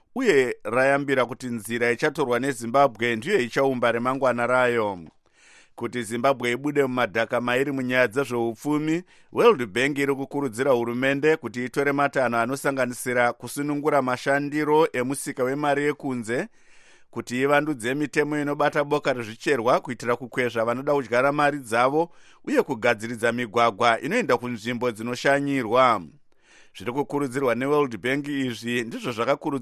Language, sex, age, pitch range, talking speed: English, male, 50-69, 120-140 Hz, 130 wpm